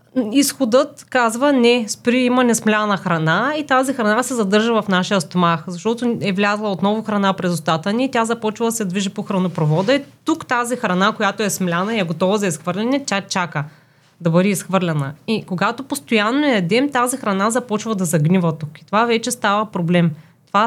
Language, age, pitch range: Bulgarian, 20-39, 180-230 Hz